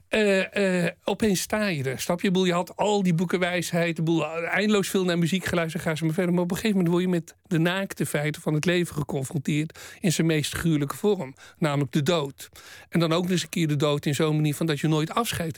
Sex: male